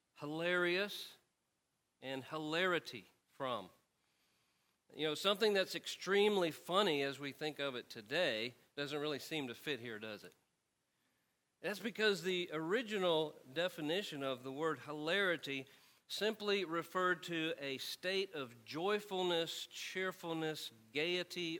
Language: English